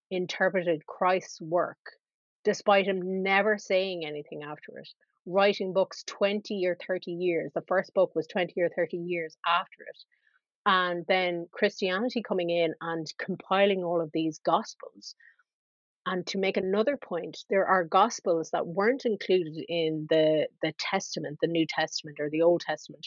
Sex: female